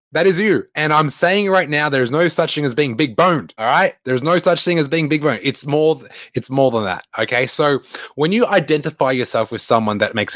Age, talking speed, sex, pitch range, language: 20-39, 250 wpm, male, 105-145 Hz, English